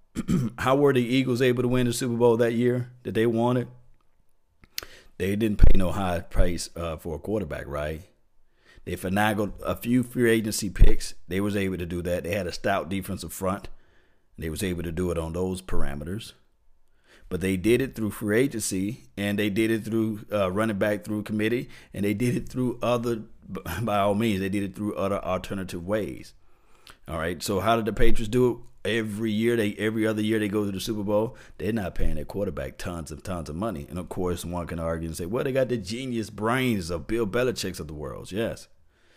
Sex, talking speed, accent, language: male, 215 wpm, American, English